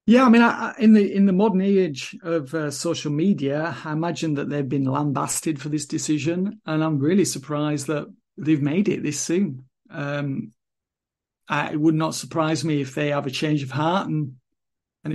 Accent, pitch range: British, 140-170 Hz